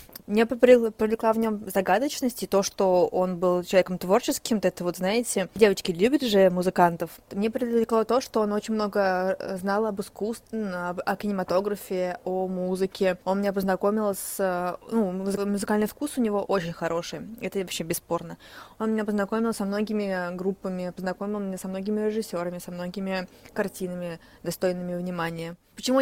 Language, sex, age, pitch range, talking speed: Russian, female, 20-39, 190-225 Hz, 150 wpm